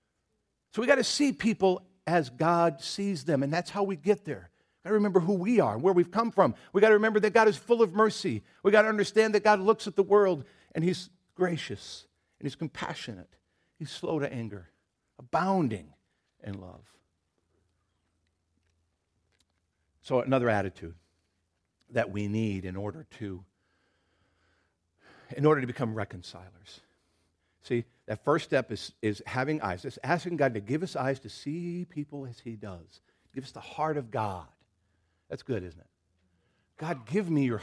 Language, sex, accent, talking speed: English, male, American, 170 wpm